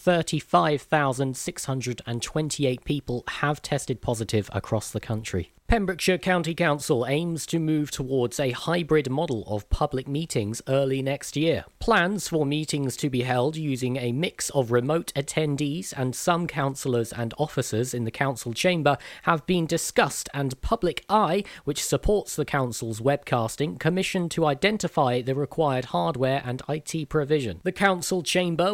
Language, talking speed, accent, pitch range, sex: English, 140 wpm, British, 130-165 Hz, male